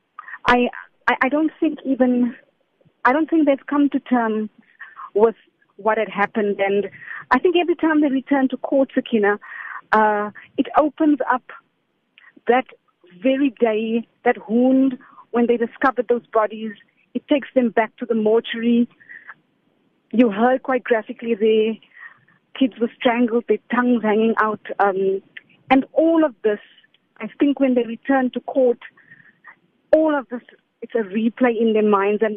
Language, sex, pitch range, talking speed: English, female, 215-260 Hz, 150 wpm